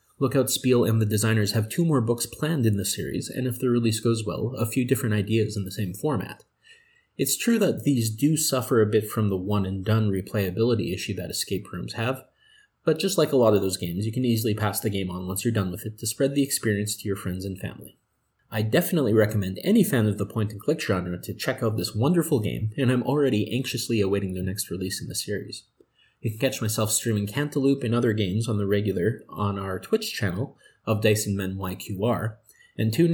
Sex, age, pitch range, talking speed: male, 30-49, 105-130 Hz, 220 wpm